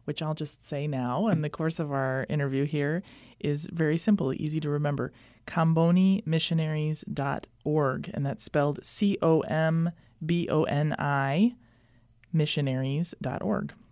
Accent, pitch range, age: American, 135-170 Hz, 30-49